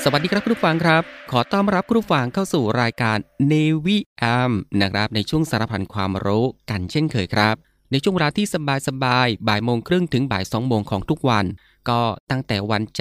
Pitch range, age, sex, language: 105-135 Hz, 20-39, male, Thai